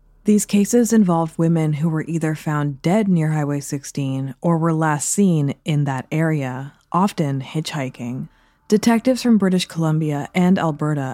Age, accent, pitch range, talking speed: 20-39, American, 145-180 Hz, 145 wpm